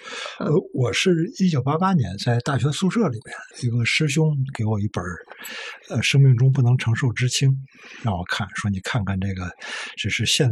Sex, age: male, 60-79